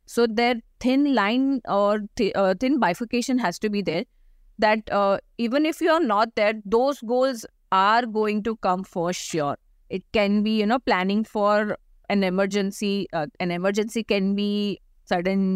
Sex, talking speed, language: female, 165 wpm, English